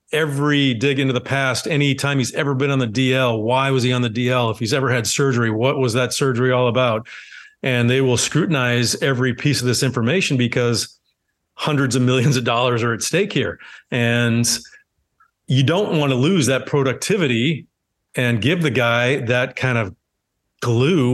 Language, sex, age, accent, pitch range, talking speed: English, male, 40-59, American, 120-135 Hz, 185 wpm